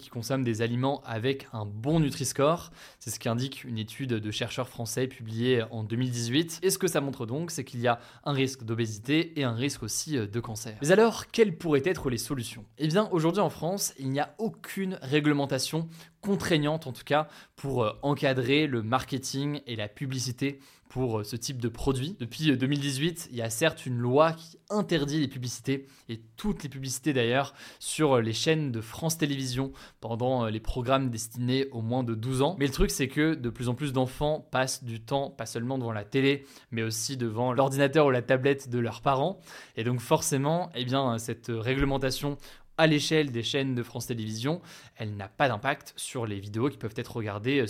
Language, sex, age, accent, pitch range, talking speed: French, male, 20-39, French, 120-150 Hz, 195 wpm